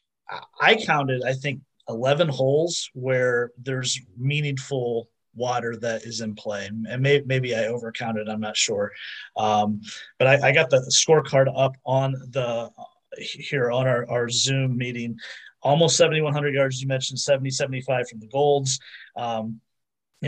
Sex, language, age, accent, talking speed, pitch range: male, English, 30-49, American, 140 wpm, 125-150 Hz